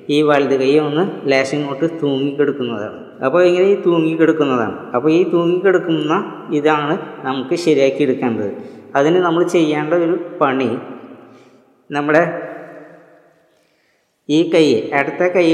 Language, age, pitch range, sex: Malayalam, 20-39, 135-165 Hz, female